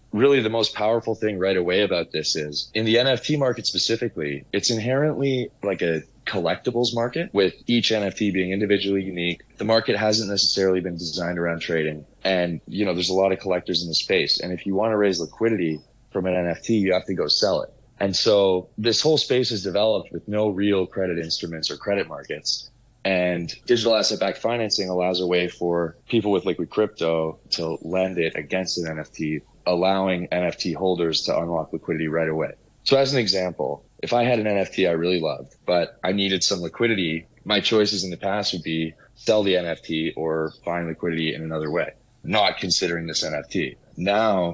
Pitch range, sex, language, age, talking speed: 85-105 Hz, male, English, 30-49, 190 wpm